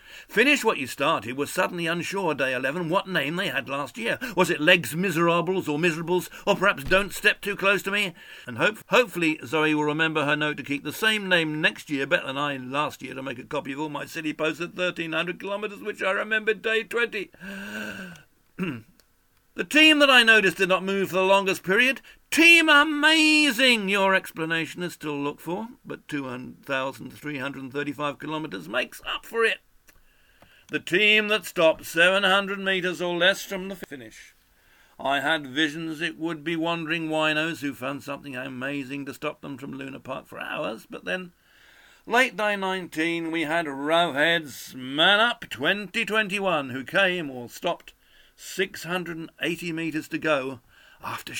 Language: English